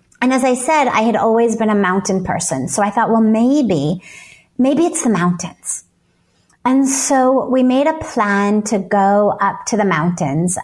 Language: English